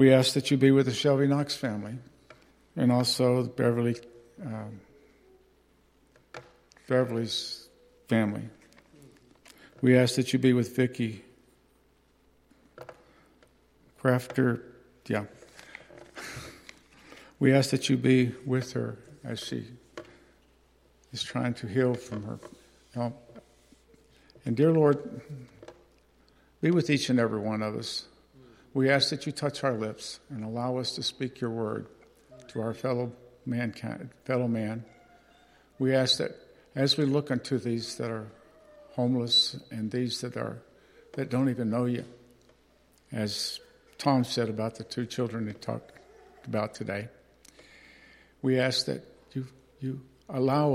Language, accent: English, American